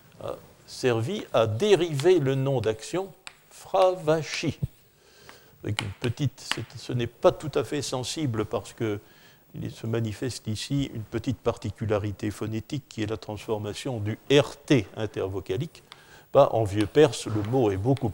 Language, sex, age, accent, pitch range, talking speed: French, male, 60-79, French, 105-145 Hz, 140 wpm